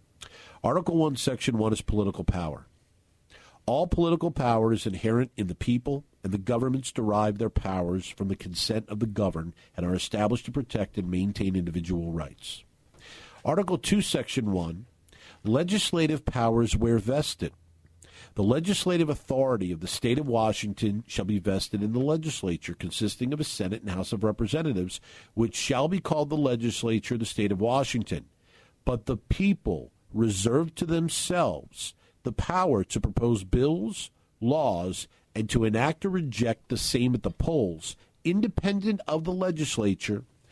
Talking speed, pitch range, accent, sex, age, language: 155 wpm, 100-140 Hz, American, male, 50-69, English